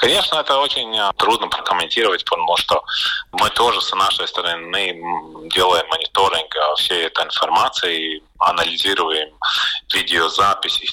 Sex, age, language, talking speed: male, 30-49, Russian, 105 wpm